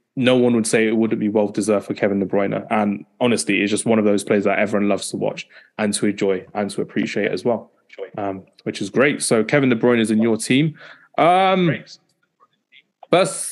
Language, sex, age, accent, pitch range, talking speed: English, male, 20-39, British, 105-125 Hz, 210 wpm